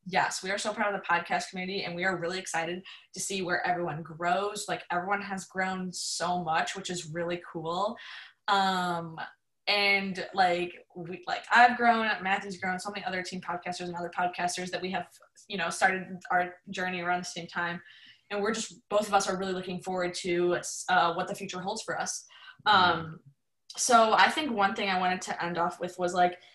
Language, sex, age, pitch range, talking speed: English, female, 20-39, 175-195 Hz, 200 wpm